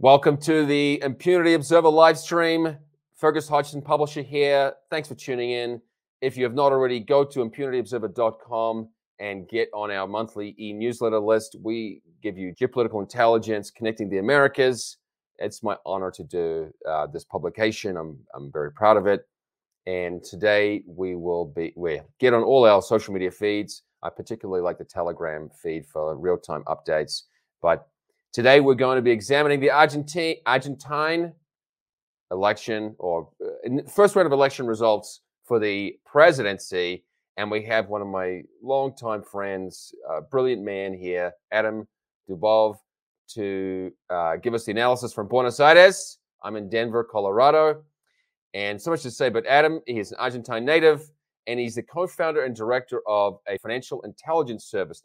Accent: Australian